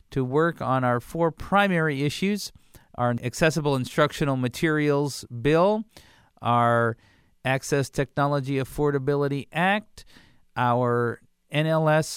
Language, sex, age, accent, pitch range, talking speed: English, male, 50-69, American, 125-160 Hz, 95 wpm